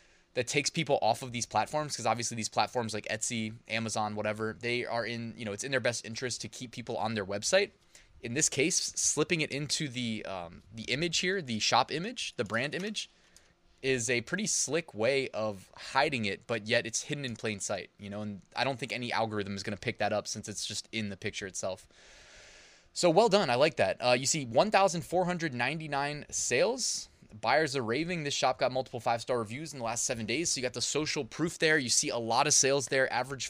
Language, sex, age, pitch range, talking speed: English, male, 20-39, 110-150 Hz, 220 wpm